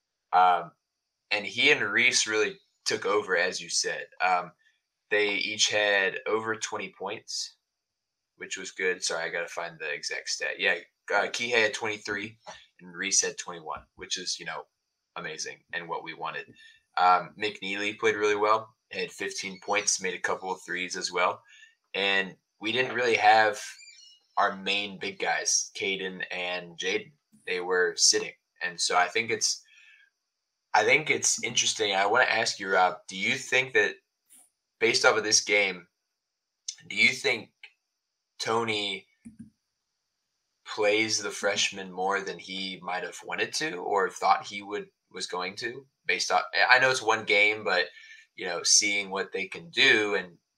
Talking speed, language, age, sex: 165 wpm, English, 20-39, male